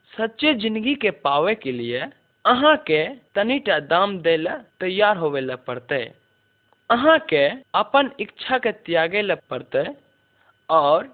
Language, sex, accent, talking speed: Hindi, male, native, 125 wpm